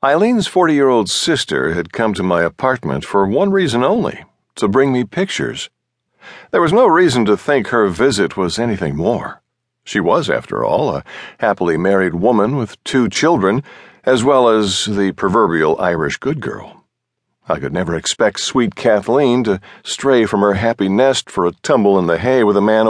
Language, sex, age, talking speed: English, male, 60-79, 175 wpm